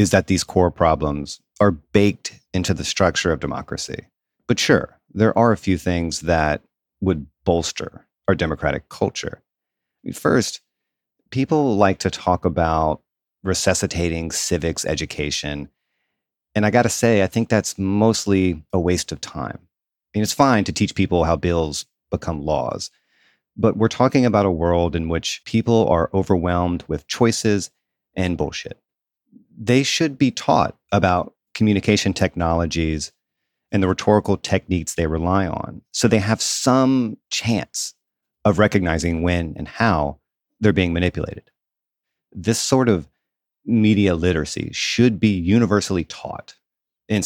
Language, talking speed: English, 140 wpm